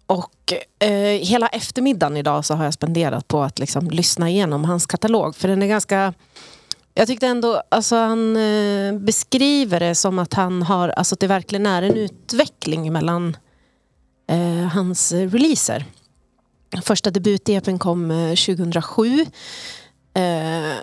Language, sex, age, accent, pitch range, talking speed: Swedish, female, 30-49, native, 165-210 Hz, 140 wpm